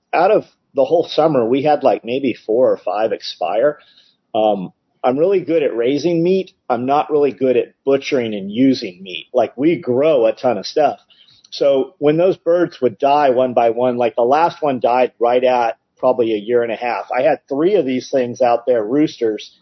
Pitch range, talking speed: 135-185 Hz, 205 wpm